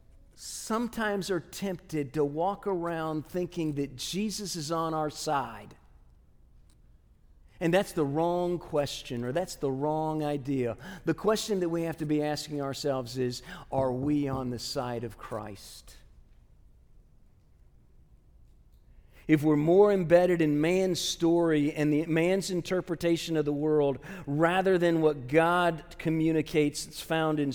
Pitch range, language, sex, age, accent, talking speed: 145-185 Hz, English, male, 50-69, American, 135 wpm